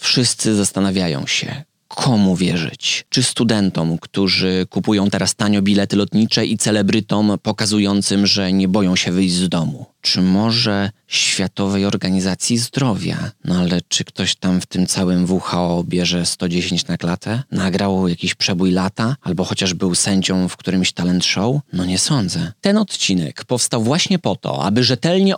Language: Polish